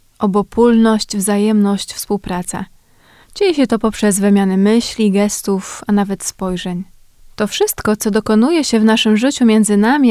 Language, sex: Polish, female